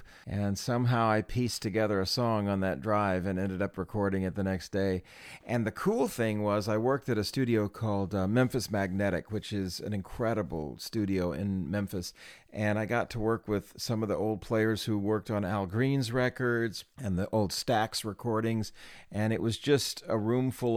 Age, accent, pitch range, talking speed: 40-59, American, 95-115 Hz, 195 wpm